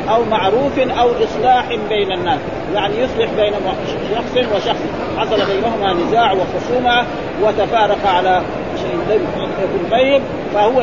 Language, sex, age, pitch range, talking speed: Arabic, male, 40-59, 210-275 Hz, 110 wpm